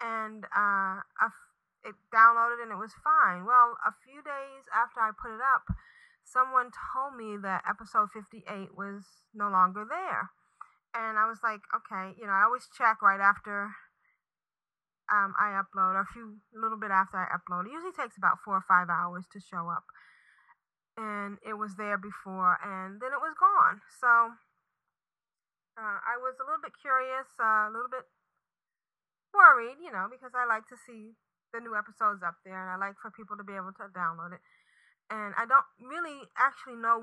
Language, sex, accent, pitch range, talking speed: English, female, American, 200-240 Hz, 185 wpm